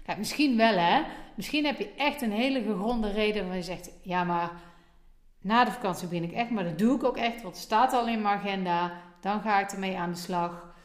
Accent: Dutch